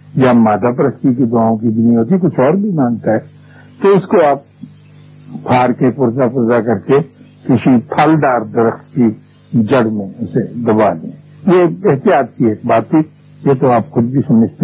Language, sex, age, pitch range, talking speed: Urdu, male, 60-79, 115-145 Hz, 185 wpm